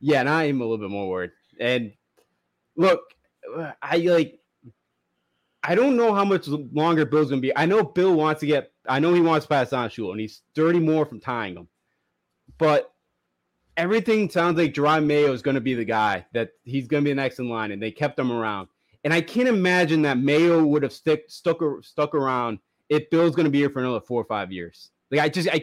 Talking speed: 210 wpm